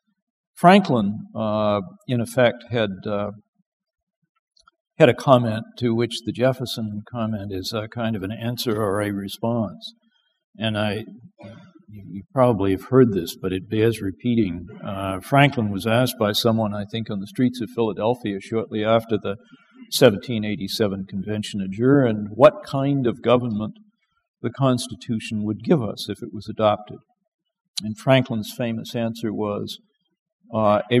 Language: English